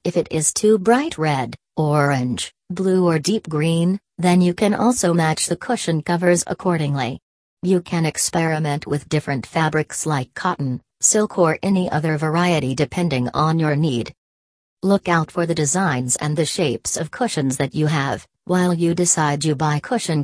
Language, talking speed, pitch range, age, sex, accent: English, 165 wpm, 150-180 Hz, 40-59, female, American